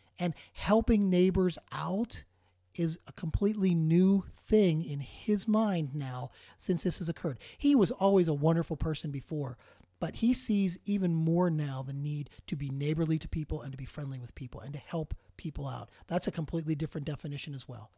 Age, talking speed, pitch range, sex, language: 40-59, 185 wpm, 140-190 Hz, male, English